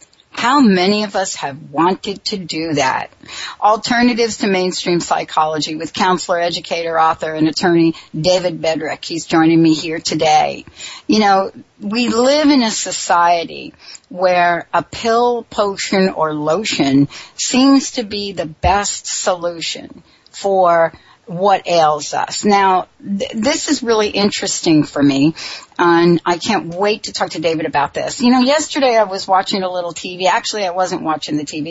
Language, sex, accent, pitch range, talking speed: English, female, American, 170-230 Hz, 155 wpm